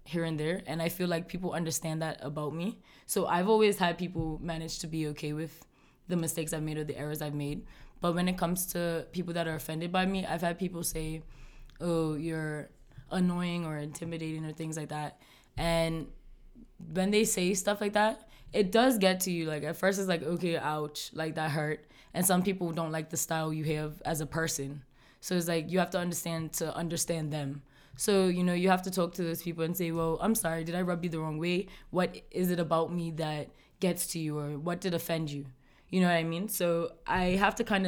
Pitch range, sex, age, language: 155-180 Hz, female, 20-39, English